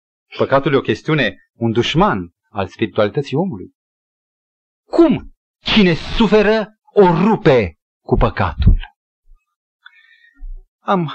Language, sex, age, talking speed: Romanian, male, 40-59, 90 wpm